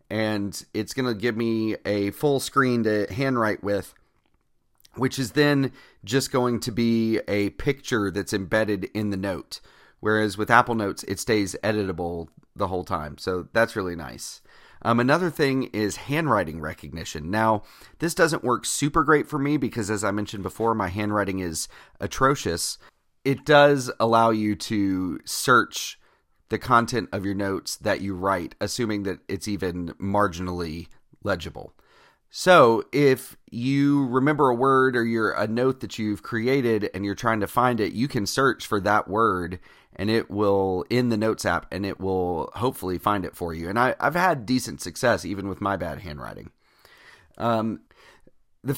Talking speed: 165 wpm